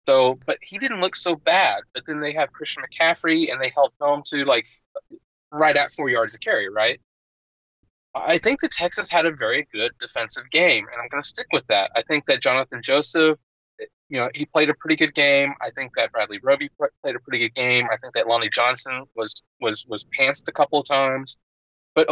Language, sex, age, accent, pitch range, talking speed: English, male, 30-49, American, 125-165 Hz, 215 wpm